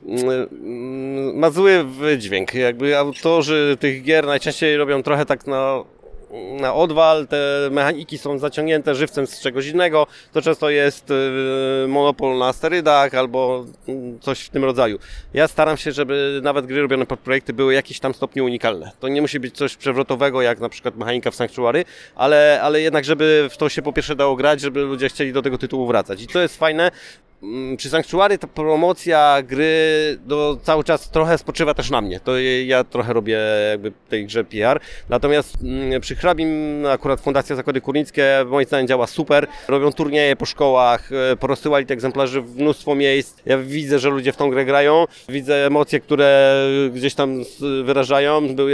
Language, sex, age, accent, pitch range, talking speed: Polish, male, 30-49, native, 135-155 Hz, 170 wpm